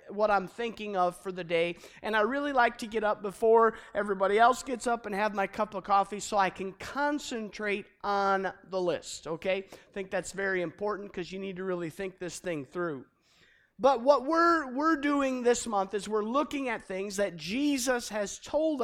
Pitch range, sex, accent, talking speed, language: 195-245 Hz, male, American, 200 wpm, English